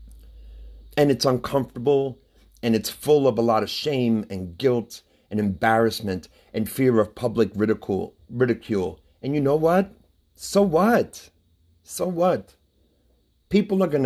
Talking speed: 135 wpm